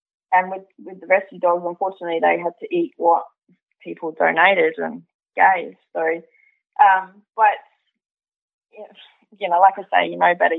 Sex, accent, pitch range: female, Australian, 170-200 Hz